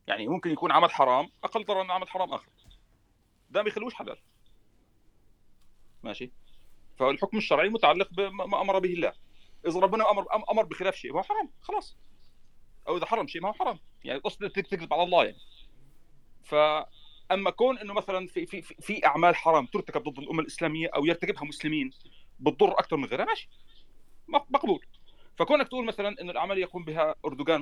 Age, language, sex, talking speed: 40-59, Arabic, male, 165 wpm